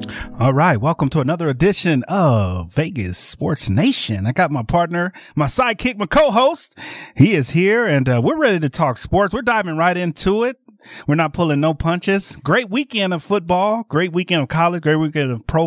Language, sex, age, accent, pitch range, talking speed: English, male, 30-49, American, 140-210 Hz, 190 wpm